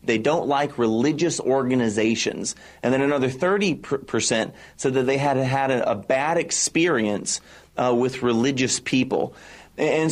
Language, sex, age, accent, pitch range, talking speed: English, male, 30-49, American, 115-145 Hz, 130 wpm